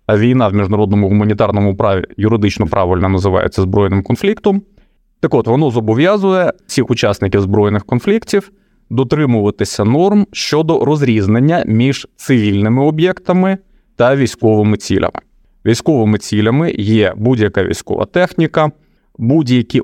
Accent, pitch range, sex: native, 105-155 Hz, male